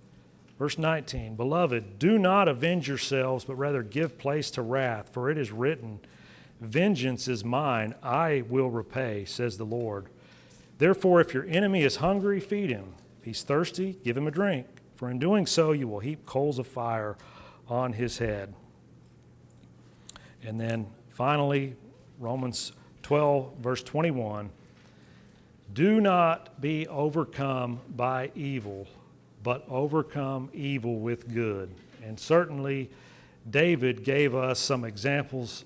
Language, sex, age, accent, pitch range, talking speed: English, male, 40-59, American, 120-160 Hz, 135 wpm